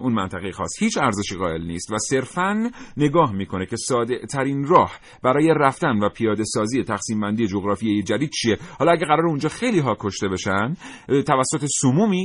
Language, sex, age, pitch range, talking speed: Persian, male, 40-59, 105-155 Hz, 170 wpm